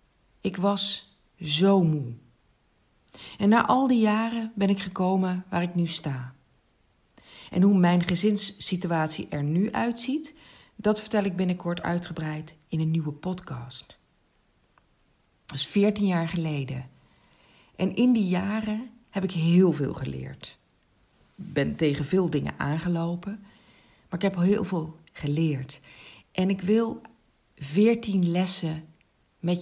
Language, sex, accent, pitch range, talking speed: Dutch, female, Dutch, 155-200 Hz, 130 wpm